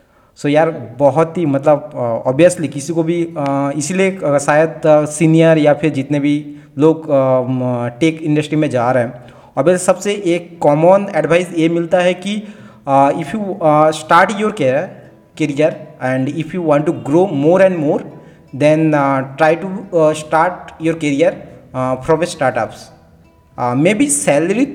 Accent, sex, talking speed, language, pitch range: native, male, 140 wpm, Hindi, 140-190 Hz